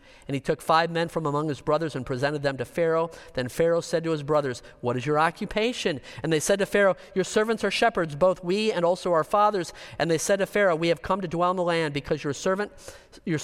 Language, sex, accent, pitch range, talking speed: English, male, American, 140-175 Hz, 250 wpm